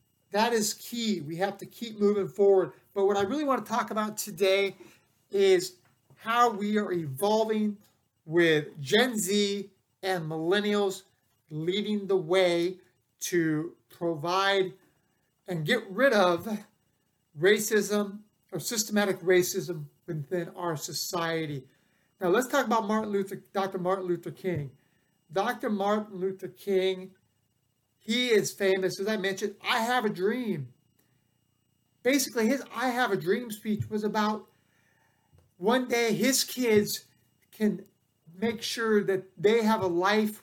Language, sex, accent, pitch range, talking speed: English, male, American, 175-215 Hz, 130 wpm